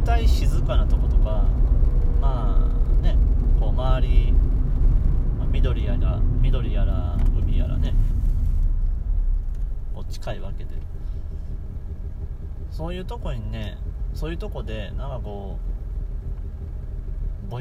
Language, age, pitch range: Japanese, 30-49, 75-90 Hz